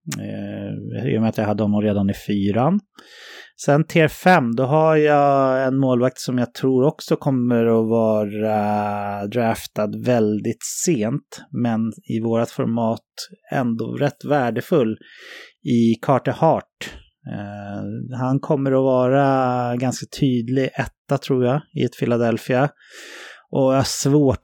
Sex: male